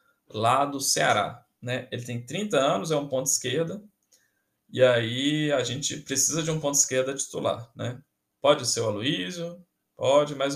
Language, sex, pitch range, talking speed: Portuguese, male, 120-160 Hz, 165 wpm